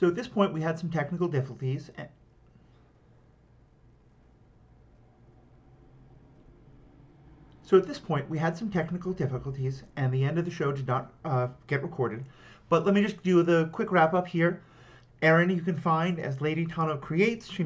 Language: English